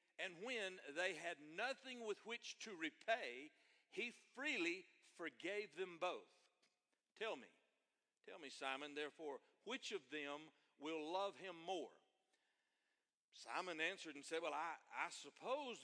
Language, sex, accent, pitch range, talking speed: English, male, American, 140-225 Hz, 135 wpm